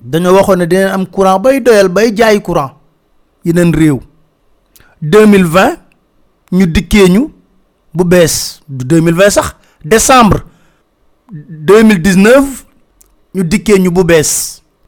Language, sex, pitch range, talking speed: French, male, 175-235 Hz, 40 wpm